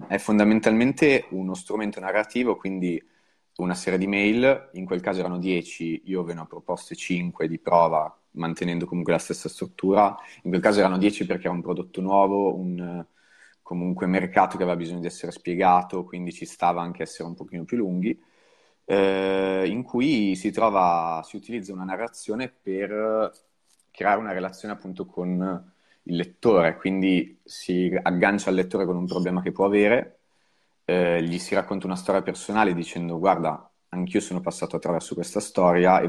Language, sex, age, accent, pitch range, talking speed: Italian, male, 30-49, native, 85-100 Hz, 170 wpm